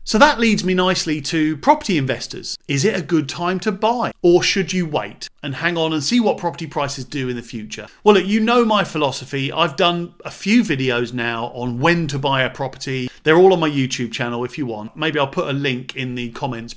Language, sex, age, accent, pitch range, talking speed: English, male, 40-59, British, 135-195 Hz, 235 wpm